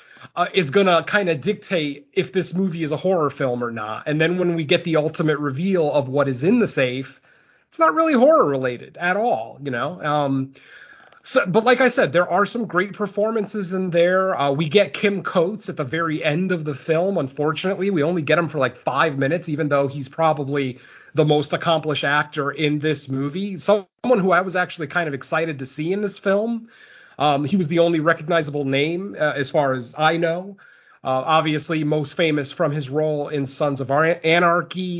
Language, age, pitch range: English, 30-49, 145-185 Hz